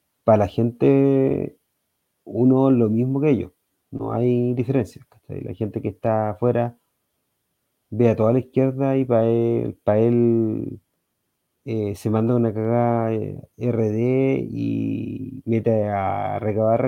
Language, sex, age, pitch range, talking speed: Spanish, male, 30-49, 110-135 Hz, 130 wpm